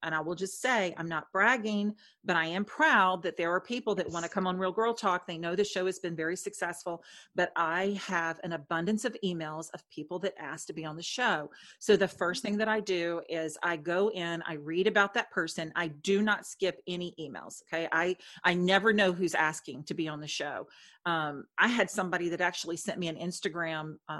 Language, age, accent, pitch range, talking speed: English, 40-59, American, 170-215 Hz, 230 wpm